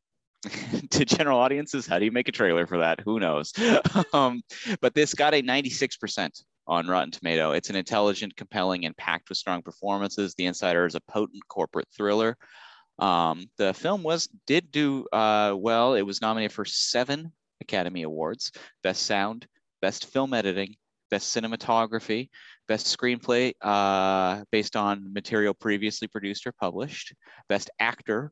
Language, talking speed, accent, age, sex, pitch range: English, 155 wpm, American, 30-49, male, 95-125 Hz